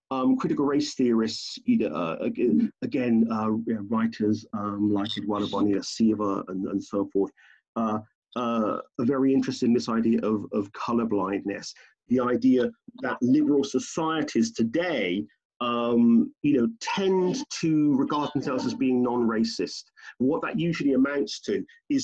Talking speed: 150 wpm